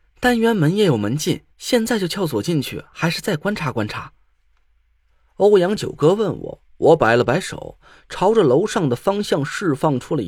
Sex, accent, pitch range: male, native, 130-200 Hz